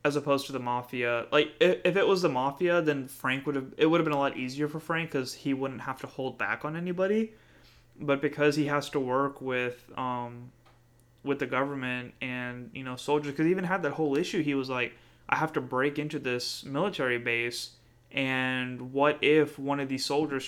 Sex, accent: male, American